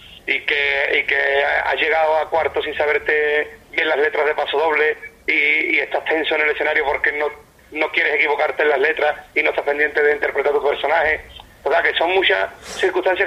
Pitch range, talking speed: 145-185 Hz, 210 wpm